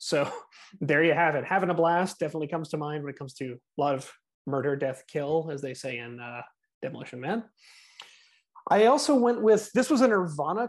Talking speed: 210 wpm